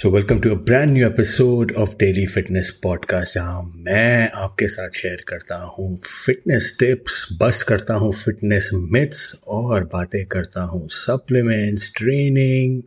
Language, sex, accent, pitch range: Hindi, male, native, 95-120 Hz